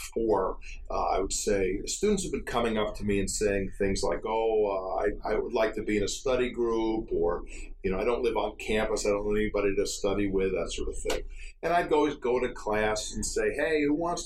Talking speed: 240 wpm